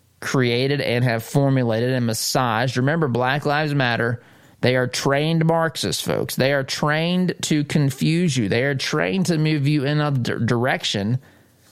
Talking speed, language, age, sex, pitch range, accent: 155 wpm, English, 30-49, male, 115-140 Hz, American